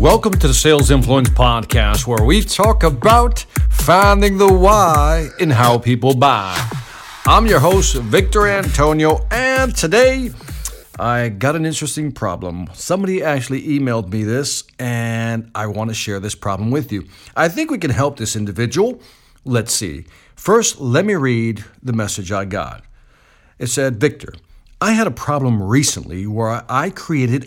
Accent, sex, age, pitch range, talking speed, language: American, male, 50-69, 110-150 Hz, 155 wpm, English